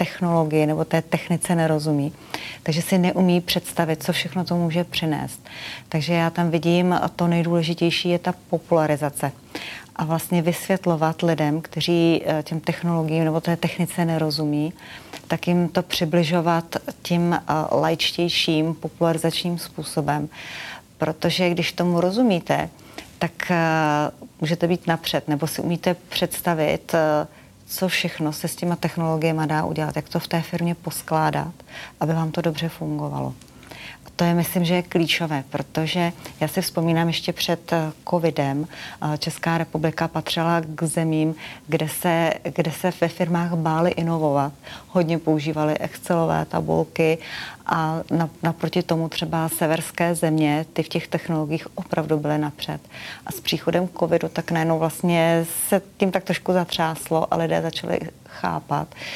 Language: Czech